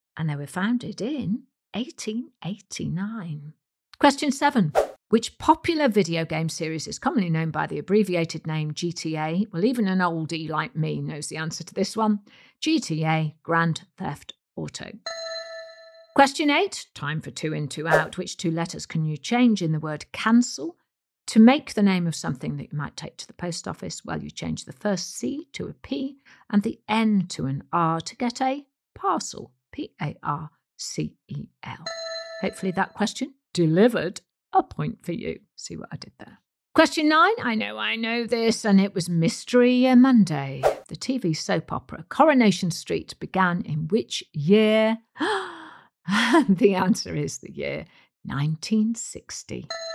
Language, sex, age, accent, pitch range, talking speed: English, female, 50-69, British, 165-235 Hz, 155 wpm